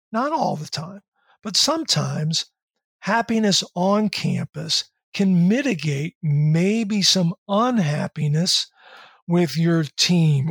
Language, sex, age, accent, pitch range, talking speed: English, male, 50-69, American, 160-210 Hz, 95 wpm